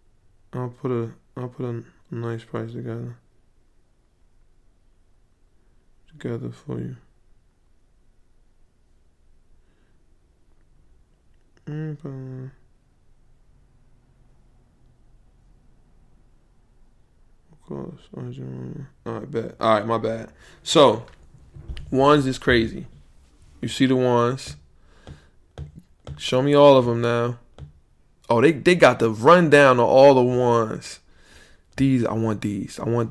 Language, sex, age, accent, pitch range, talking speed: English, male, 20-39, American, 90-120 Hz, 95 wpm